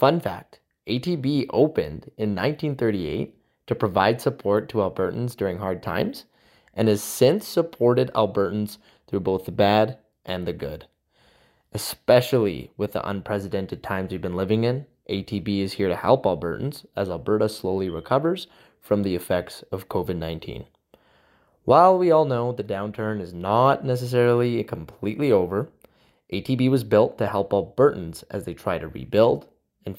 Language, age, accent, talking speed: English, 20-39, American, 145 wpm